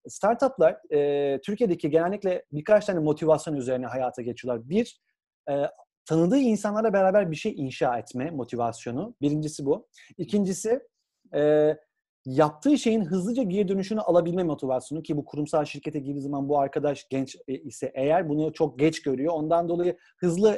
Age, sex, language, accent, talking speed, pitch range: 40-59, male, Turkish, native, 145 wpm, 145-205 Hz